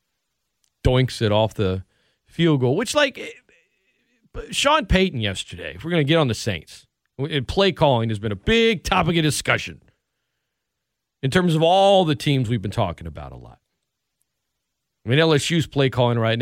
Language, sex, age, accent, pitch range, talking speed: English, male, 40-59, American, 120-175 Hz, 170 wpm